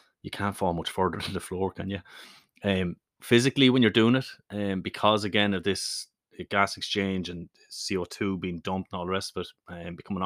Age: 30-49